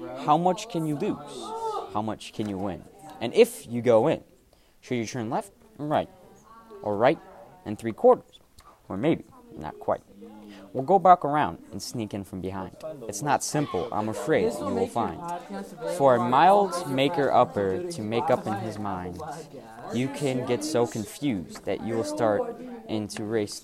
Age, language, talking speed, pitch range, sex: 20-39, English, 175 wpm, 105-150 Hz, male